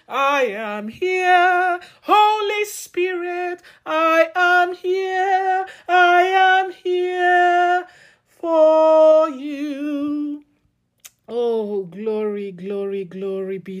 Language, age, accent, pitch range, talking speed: English, 40-59, Nigerian, 190-295 Hz, 80 wpm